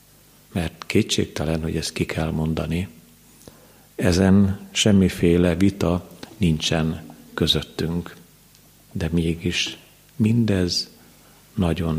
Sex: male